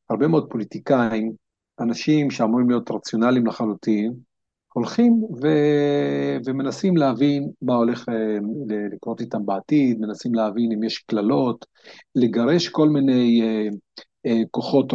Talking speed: 105 wpm